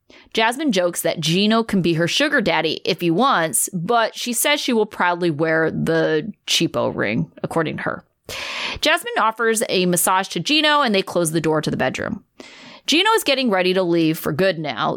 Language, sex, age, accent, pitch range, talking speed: English, female, 30-49, American, 170-240 Hz, 190 wpm